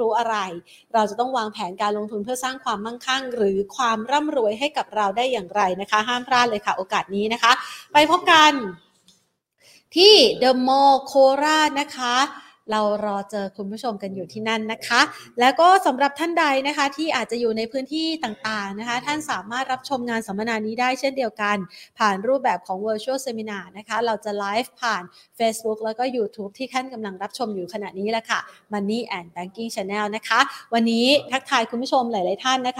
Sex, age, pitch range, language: female, 30-49, 210-260 Hz, Thai